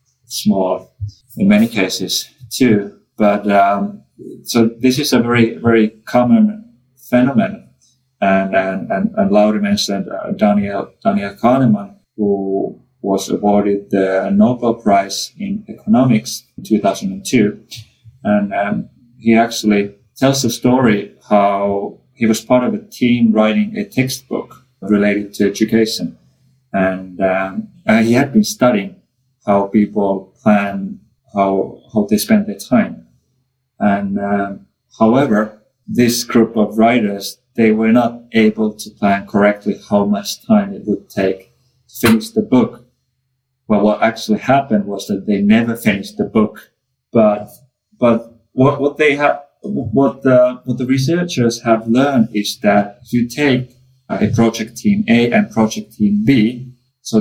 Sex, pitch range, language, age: male, 105-130 Hz, English, 30-49